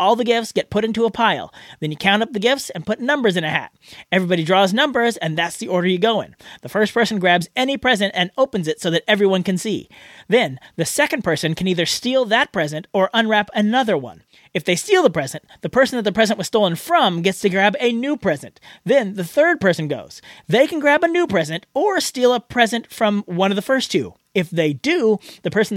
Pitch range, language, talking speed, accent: 180-235 Hz, English, 240 wpm, American